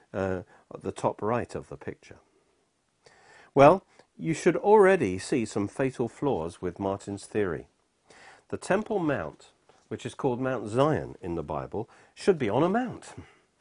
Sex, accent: male, British